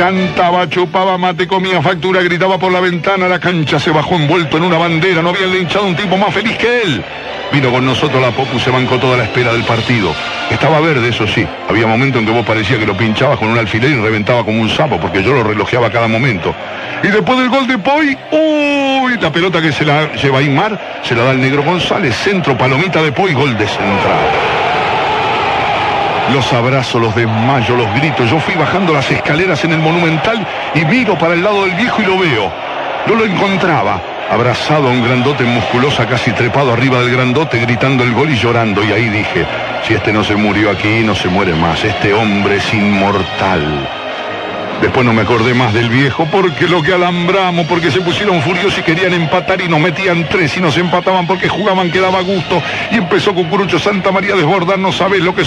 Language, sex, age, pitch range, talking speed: Spanish, male, 60-79, 125-185 Hz, 210 wpm